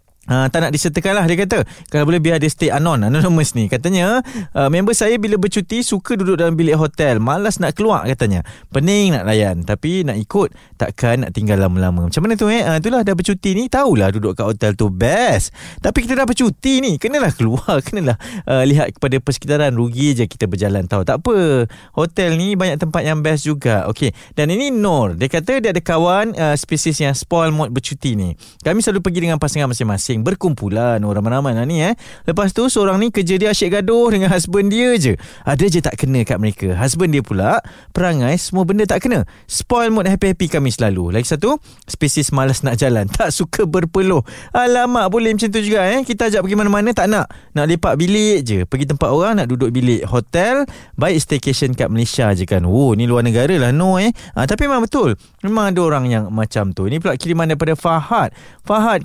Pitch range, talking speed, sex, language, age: 125-200 Hz, 205 wpm, male, Malay, 20-39